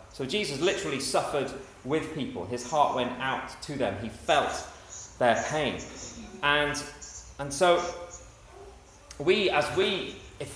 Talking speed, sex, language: 130 wpm, male, English